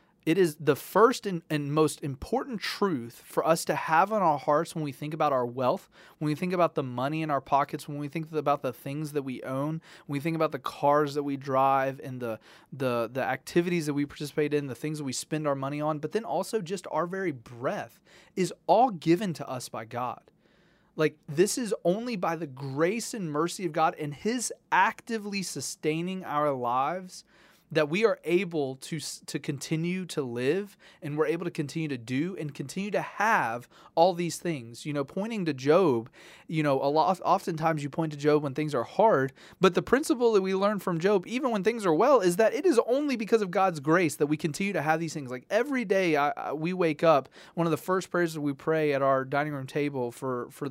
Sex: male